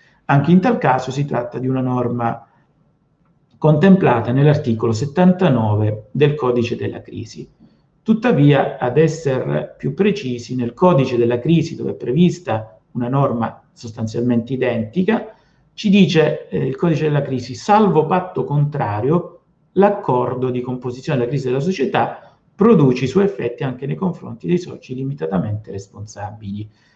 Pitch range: 120-165 Hz